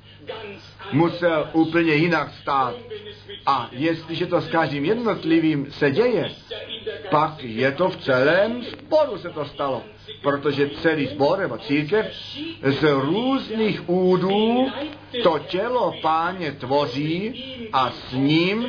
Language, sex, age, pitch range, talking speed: Czech, male, 50-69, 150-205 Hz, 115 wpm